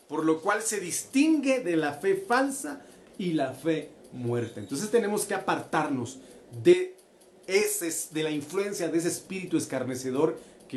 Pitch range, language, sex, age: 145-220 Hz, Spanish, male, 40-59